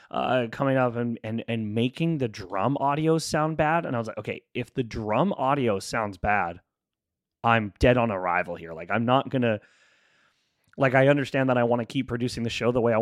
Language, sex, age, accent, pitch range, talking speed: English, male, 30-49, American, 115-140 Hz, 210 wpm